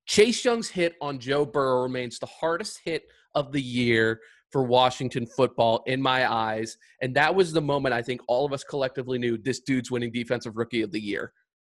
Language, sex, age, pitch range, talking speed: English, male, 30-49, 120-160 Hz, 200 wpm